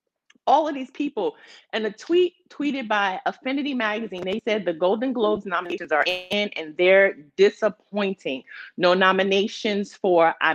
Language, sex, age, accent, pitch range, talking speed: English, female, 30-49, American, 195-280 Hz, 150 wpm